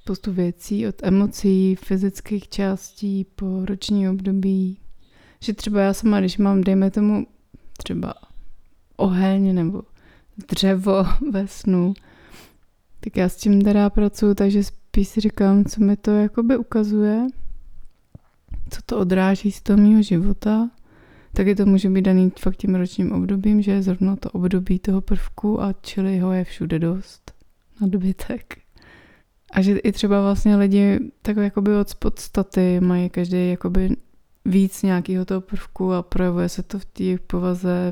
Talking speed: 140 wpm